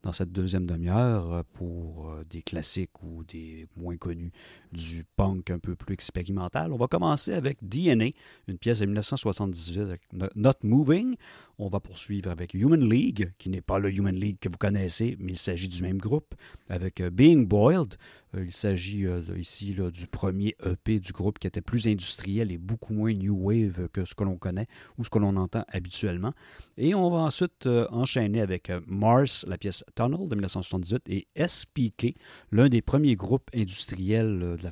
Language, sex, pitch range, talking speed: French, male, 90-115 Hz, 175 wpm